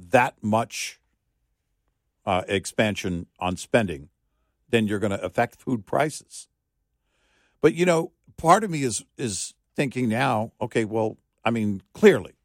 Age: 50-69